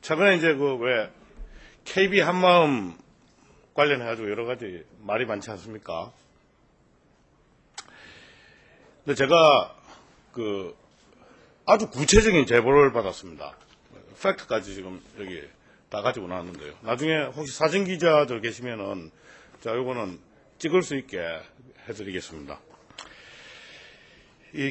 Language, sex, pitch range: Korean, male, 110-155 Hz